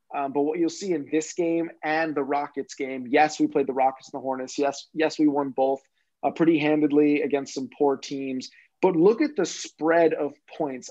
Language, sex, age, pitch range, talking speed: English, male, 30-49, 140-160 Hz, 215 wpm